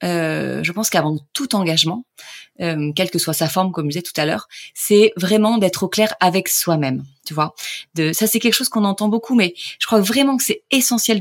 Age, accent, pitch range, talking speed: 30-49, French, 160-205 Hz, 225 wpm